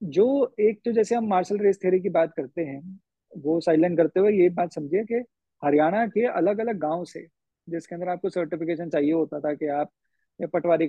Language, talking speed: Hindi, 205 wpm